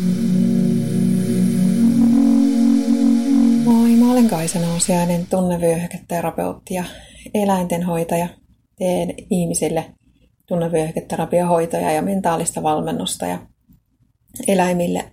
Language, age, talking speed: Finnish, 30-49, 55 wpm